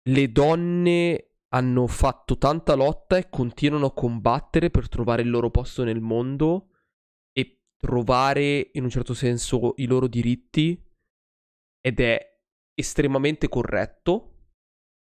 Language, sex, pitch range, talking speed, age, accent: Italian, male, 115-145 Hz, 120 wpm, 20-39, native